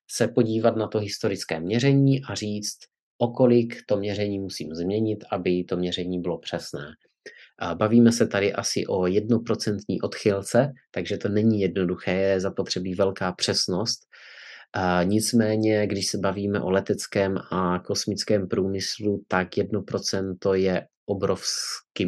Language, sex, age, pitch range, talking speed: Czech, male, 30-49, 90-105 Hz, 130 wpm